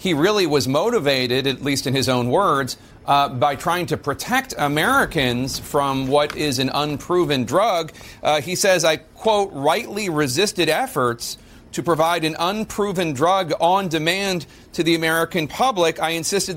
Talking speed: 155 wpm